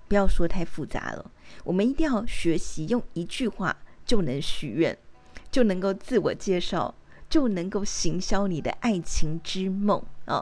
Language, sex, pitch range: Chinese, female, 170-230 Hz